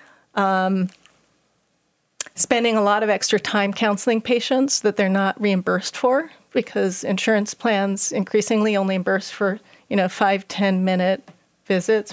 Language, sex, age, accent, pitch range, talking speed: English, female, 40-59, American, 190-220 Hz, 130 wpm